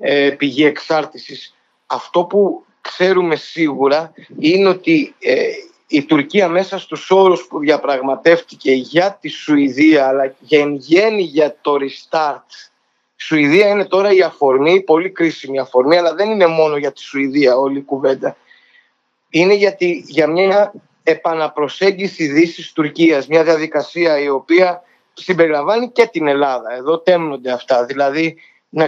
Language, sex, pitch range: Greek, male, 140-190 Hz